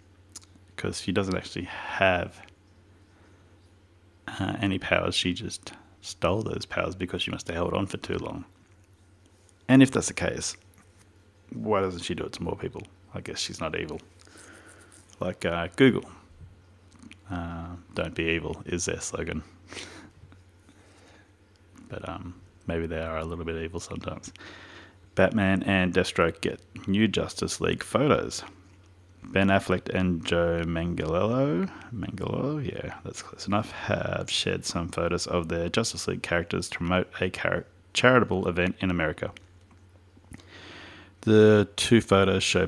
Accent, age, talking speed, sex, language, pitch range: Australian, 30-49, 140 wpm, male, English, 90-100 Hz